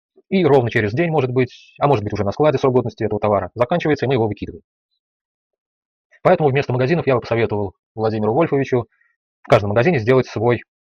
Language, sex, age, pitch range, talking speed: Russian, male, 30-49, 110-150 Hz, 190 wpm